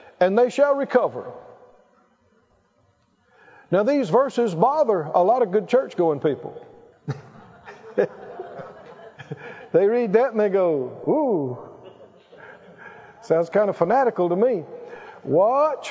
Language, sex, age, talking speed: English, male, 50-69, 110 wpm